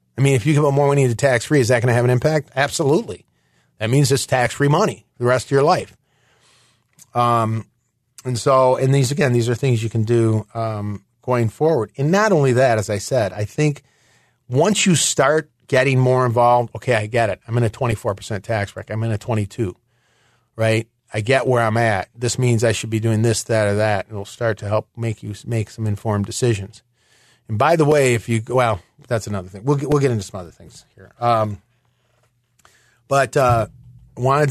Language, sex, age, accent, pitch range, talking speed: English, male, 40-59, American, 110-135 Hz, 210 wpm